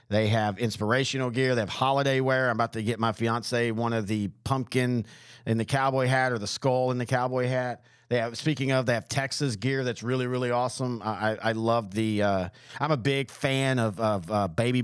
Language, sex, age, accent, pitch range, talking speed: English, male, 40-59, American, 110-130 Hz, 220 wpm